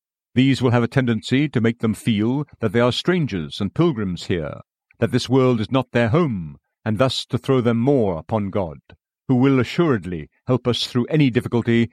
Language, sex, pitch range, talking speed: English, male, 110-135 Hz, 195 wpm